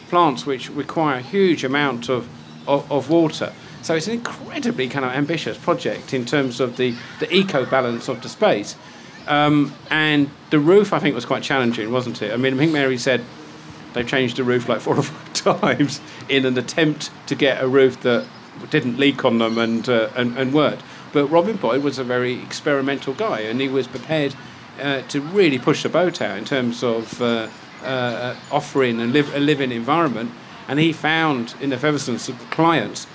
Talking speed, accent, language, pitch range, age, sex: 195 wpm, British, English, 130-155 Hz, 50-69, male